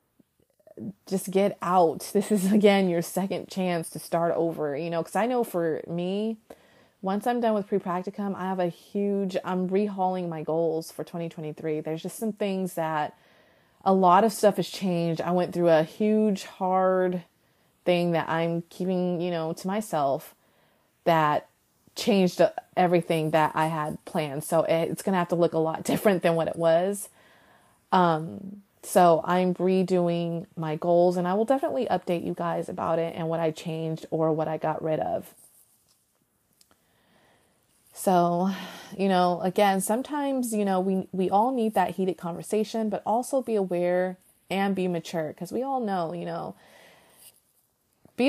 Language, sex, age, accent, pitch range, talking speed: English, female, 30-49, American, 170-200 Hz, 165 wpm